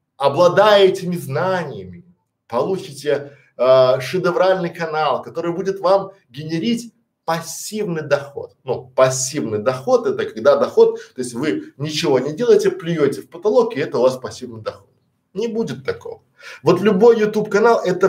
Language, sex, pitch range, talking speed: Russian, male, 145-210 Hz, 140 wpm